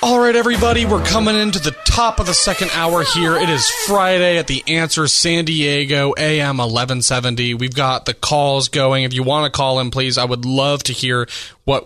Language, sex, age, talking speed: English, male, 20-39, 210 wpm